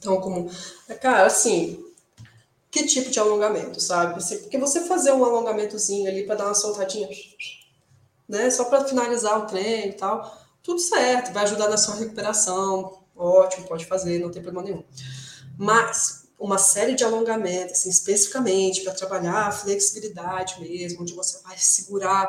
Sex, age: female, 20-39